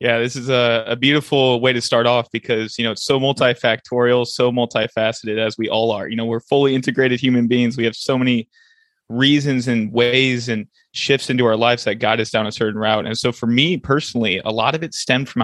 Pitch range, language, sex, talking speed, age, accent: 115-135 Hz, English, male, 230 wpm, 20-39, American